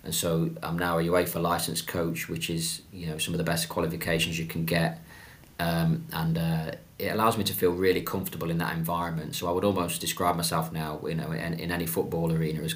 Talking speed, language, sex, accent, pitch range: 225 wpm, English, male, British, 85-90 Hz